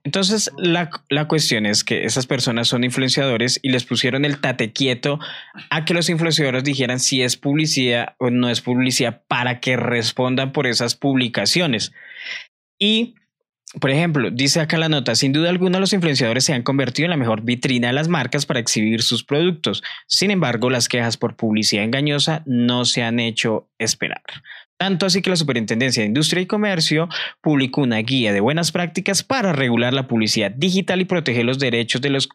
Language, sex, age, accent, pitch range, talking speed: Spanish, male, 20-39, Colombian, 125-175 Hz, 180 wpm